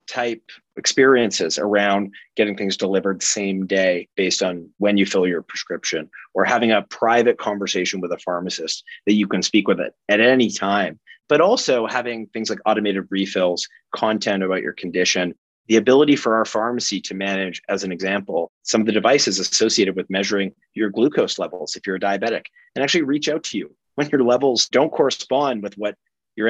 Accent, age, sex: American, 30-49, male